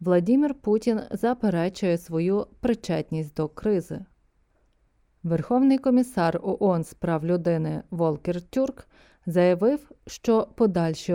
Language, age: Ukrainian, 30-49